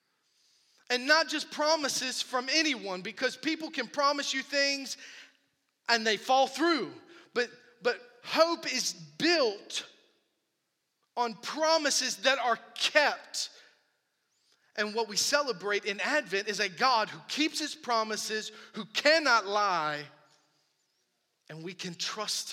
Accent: American